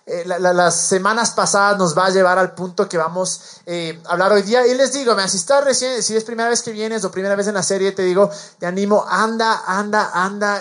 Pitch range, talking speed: 185-220 Hz, 245 wpm